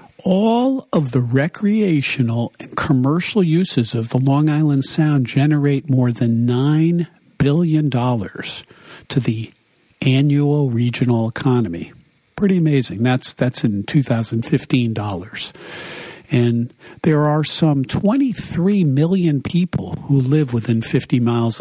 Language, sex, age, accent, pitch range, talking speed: English, male, 50-69, American, 120-160 Hz, 110 wpm